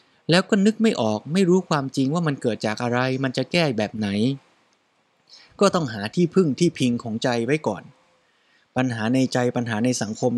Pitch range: 120-160 Hz